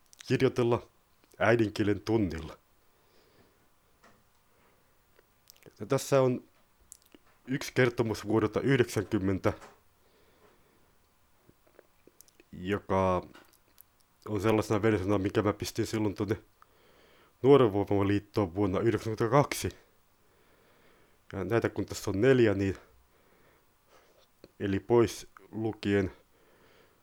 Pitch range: 100-120 Hz